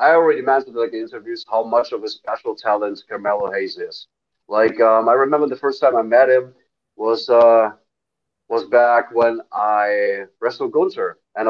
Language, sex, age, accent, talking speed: English, male, 30-49, German, 185 wpm